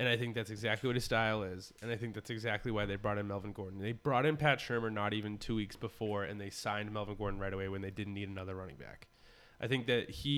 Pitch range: 105-120 Hz